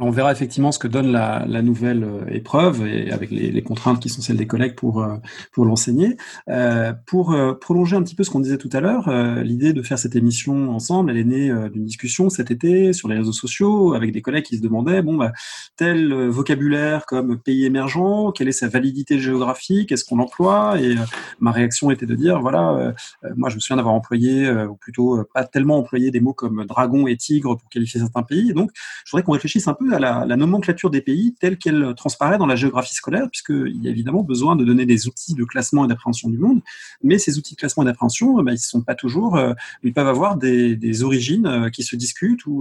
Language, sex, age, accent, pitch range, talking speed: English, male, 30-49, French, 120-160 Hz, 235 wpm